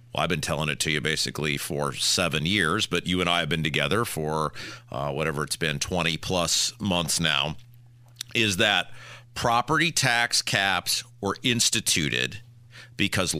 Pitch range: 105-145 Hz